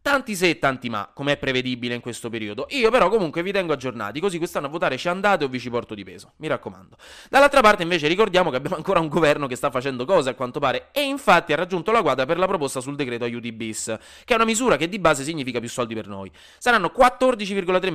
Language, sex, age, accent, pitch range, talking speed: Italian, male, 20-39, native, 125-200 Hz, 245 wpm